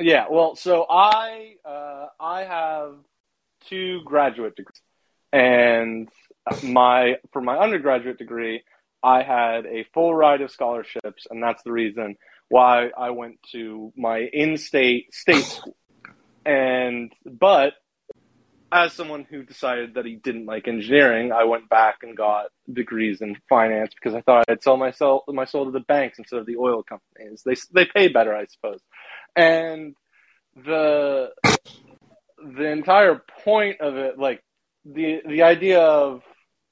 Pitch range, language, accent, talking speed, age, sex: 120-155 Hz, English, American, 145 wpm, 30-49, male